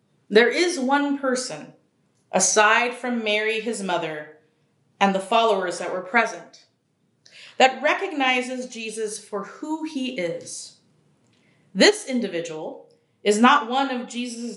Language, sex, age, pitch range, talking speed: English, female, 30-49, 195-260 Hz, 120 wpm